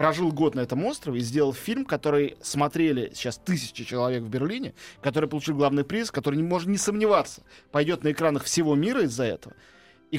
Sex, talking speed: male, 190 wpm